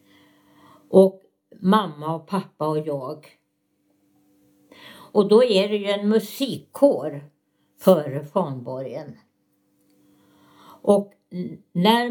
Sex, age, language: female, 60-79, Swedish